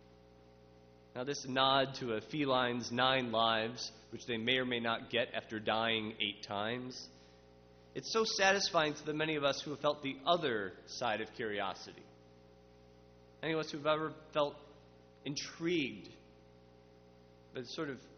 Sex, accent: male, American